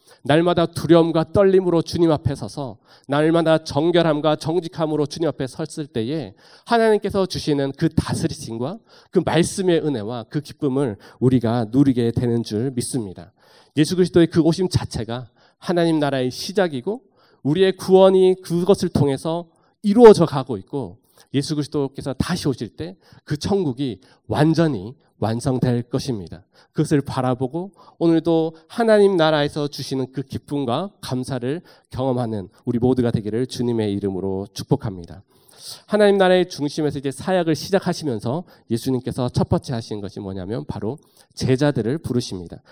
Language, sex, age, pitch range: Korean, male, 40-59, 120-160 Hz